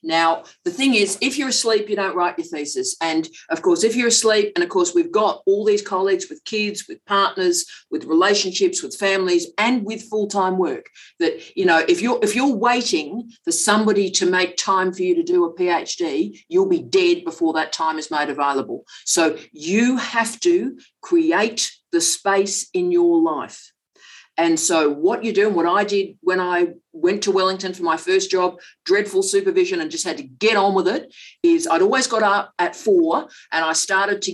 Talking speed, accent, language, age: 200 wpm, Australian, English, 50-69